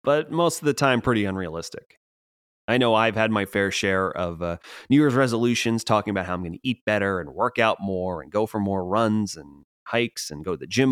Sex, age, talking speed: male, 30-49, 235 wpm